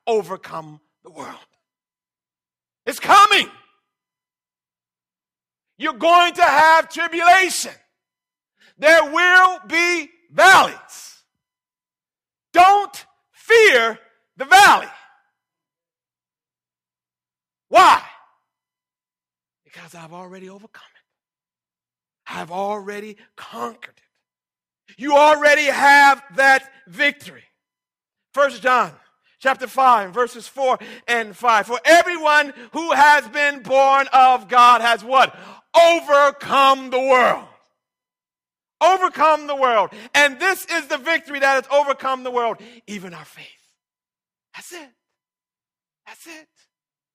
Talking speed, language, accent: 95 wpm, English, American